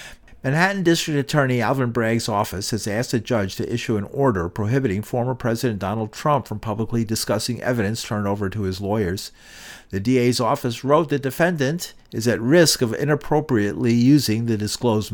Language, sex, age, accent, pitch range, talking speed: English, male, 50-69, American, 105-135 Hz, 165 wpm